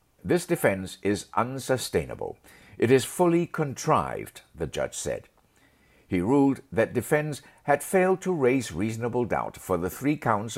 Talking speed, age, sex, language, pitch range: 140 wpm, 60-79, male, English, 95-145 Hz